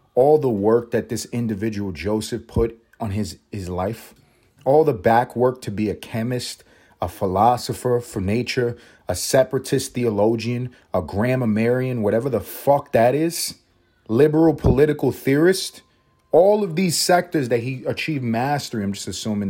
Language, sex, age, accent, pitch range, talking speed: English, male, 30-49, American, 100-155 Hz, 150 wpm